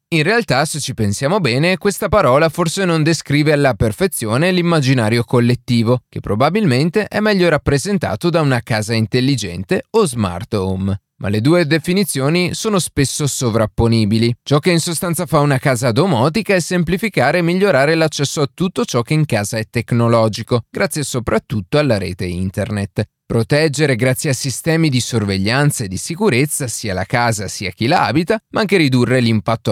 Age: 30-49